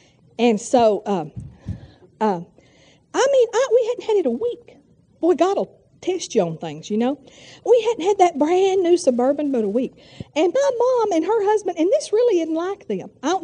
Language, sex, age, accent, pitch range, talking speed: English, female, 50-69, American, 240-370 Hz, 195 wpm